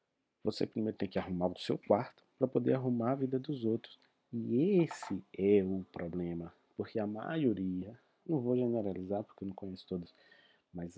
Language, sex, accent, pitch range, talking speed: Portuguese, male, Brazilian, 95-125 Hz, 175 wpm